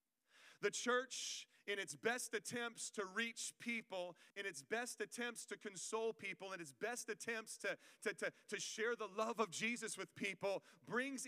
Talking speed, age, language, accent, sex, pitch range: 160 wpm, 40-59, English, American, male, 170-230 Hz